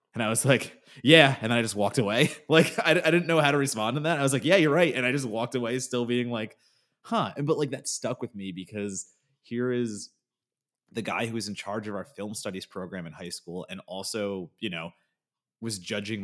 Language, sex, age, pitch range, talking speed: English, male, 30-49, 95-125 Hz, 240 wpm